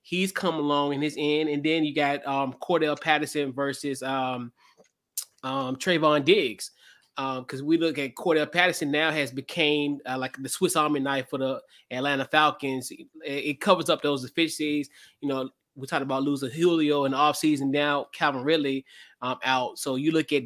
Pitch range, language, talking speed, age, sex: 130-155 Hz, English, 190 wpm, 20-39, male